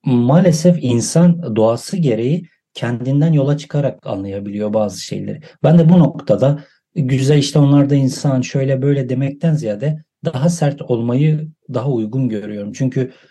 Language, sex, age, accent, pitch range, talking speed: Turkish, male, 40-59, native, 125-155 Hz, 130 wpm